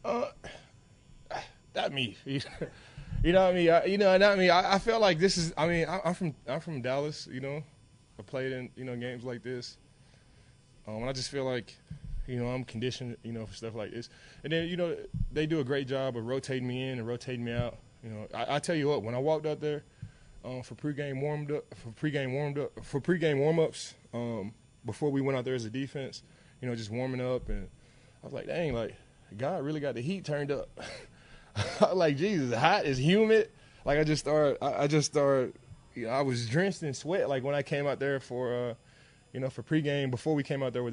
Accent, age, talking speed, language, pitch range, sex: American, 20-39, 230 wpm, English, 120-145 Hz, male